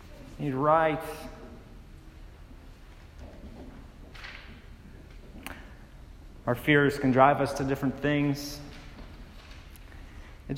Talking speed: 60 wpm